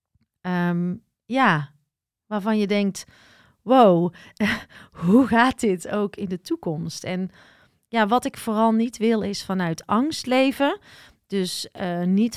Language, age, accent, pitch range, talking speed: Dutch, 40-59, Dutch, 175-225 Hz, 125 wpm